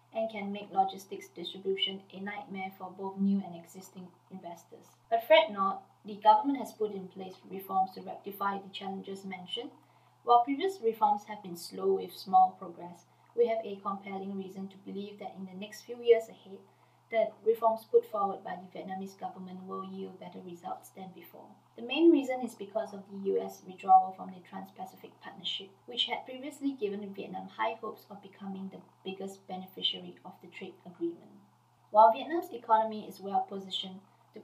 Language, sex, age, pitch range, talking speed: English, female, 20-39, 190-230 Hz, 175 wpm